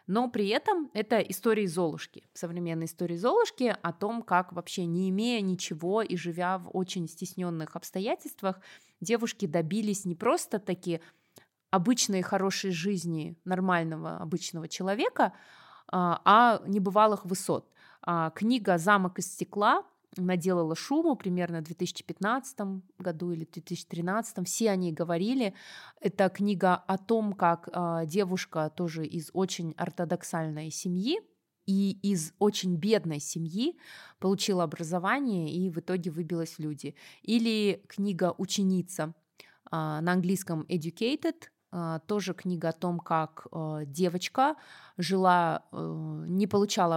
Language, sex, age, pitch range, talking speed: Russian, female, 20-39, 170-200 Hz, 125 wpm